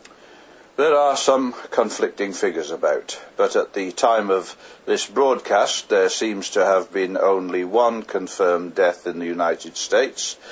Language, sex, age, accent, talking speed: English, male, 60-79, British, 150 wpm